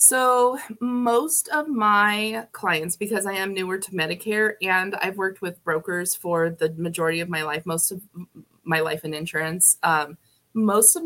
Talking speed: 170 wpm